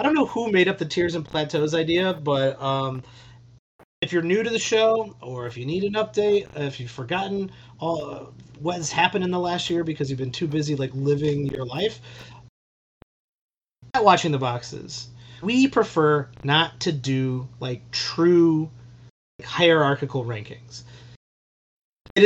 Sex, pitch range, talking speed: male, 125-170 Hz, 160 wpm